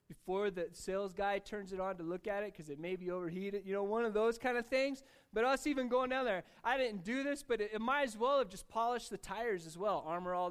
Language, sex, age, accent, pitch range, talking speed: English, male, 20-39, American, 165-255 Hz, 280 wpm